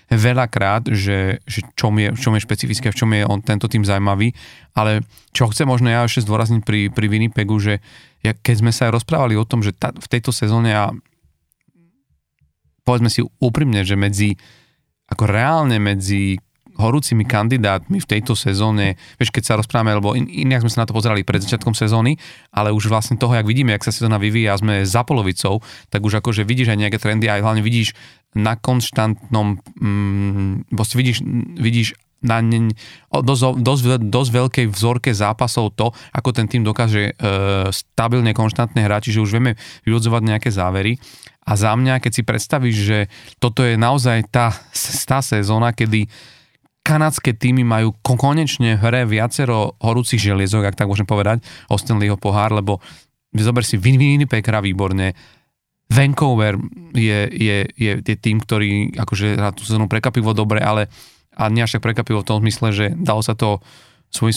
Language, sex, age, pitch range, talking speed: Slovak, male, 30-49, 105-125 Hz, 165 wpm